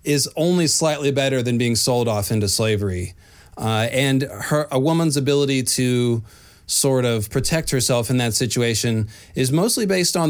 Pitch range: 110-130 Hz